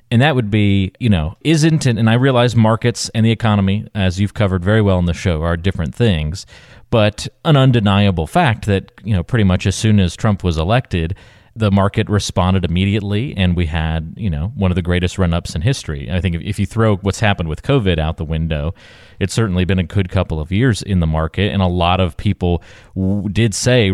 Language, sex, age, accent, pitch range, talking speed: English, male, 30-49, American, 90-110 Hz, 220 wpm